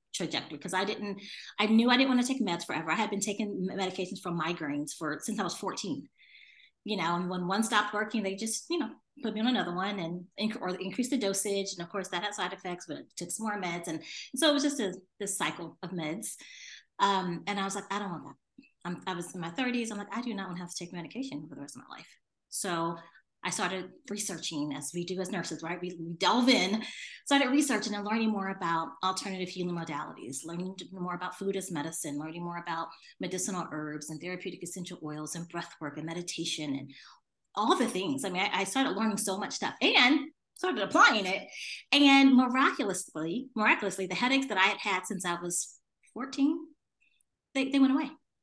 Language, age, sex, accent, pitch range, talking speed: English, 30-49, female, American, 175-220 Hz, 220 wpm